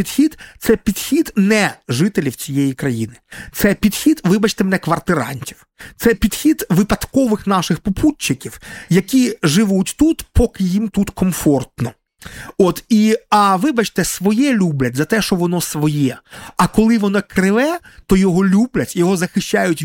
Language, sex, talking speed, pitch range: Ukrainian, male, 135 wpm, 150-215 Hz